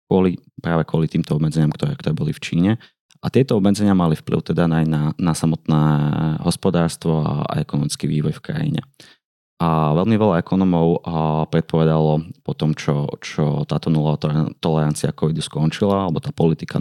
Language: Slovak